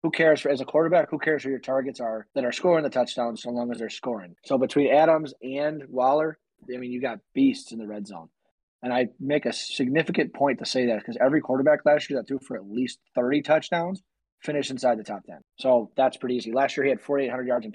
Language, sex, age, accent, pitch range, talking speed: English, male, 30-49, American, 125-150 Hz, 245 wpm